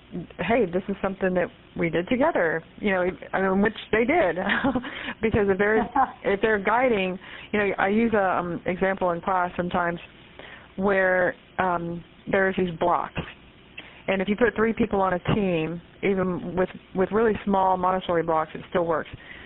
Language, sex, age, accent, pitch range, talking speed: English, female, 40-59, American, 180-220 Hz, 165 wpm